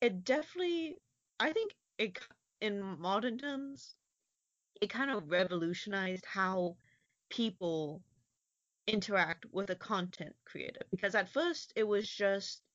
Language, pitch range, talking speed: English, 165-215 Hz, 115 wpm